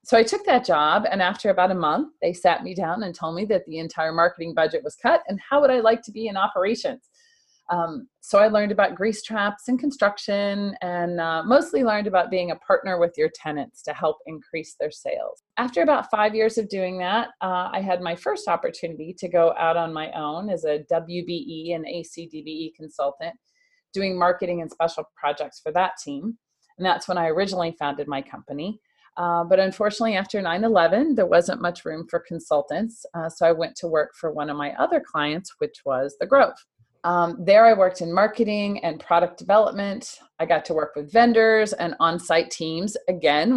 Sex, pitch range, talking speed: female, 170-225 Hz, 200 wpm